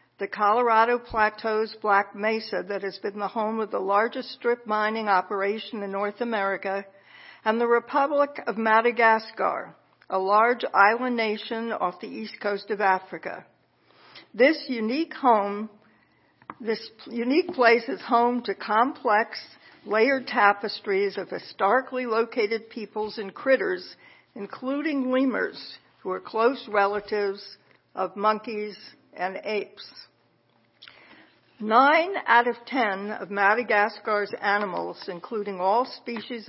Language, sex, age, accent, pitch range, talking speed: English, female, 60-79, American, 200-245 Hz, 120 wpm